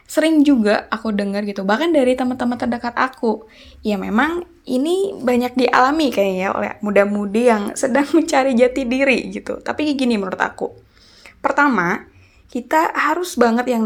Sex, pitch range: female, 200-275 Hz